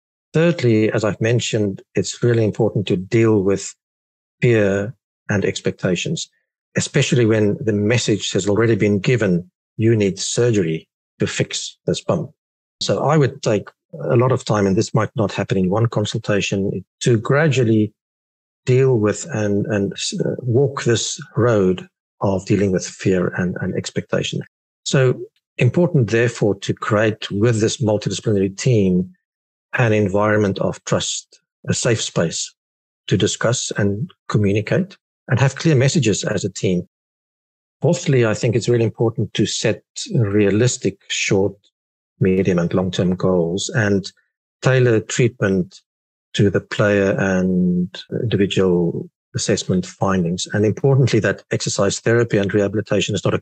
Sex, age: male, 50-69